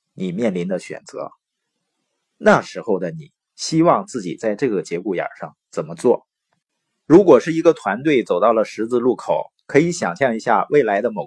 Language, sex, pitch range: Chinese, male, 125-185 Hz